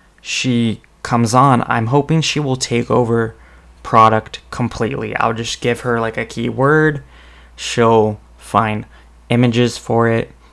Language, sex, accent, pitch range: English, male, American, 95-115 Hz